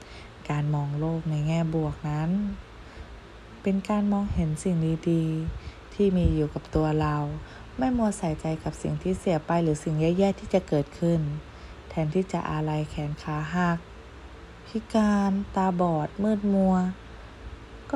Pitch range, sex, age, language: 150-185 Hz, female, 20-39, Thai